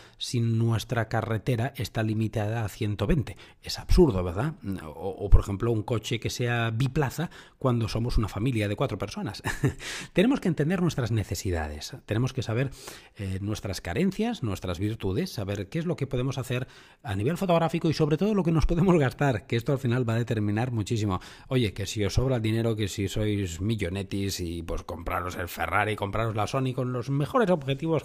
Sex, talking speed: male, 190 wpm